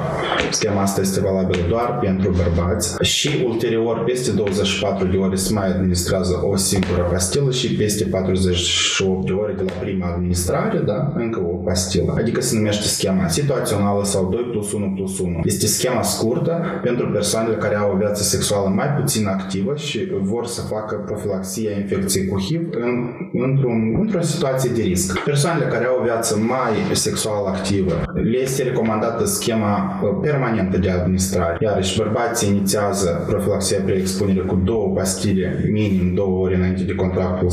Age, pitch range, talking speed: 20-39, 95-110 Hz, 160 wpm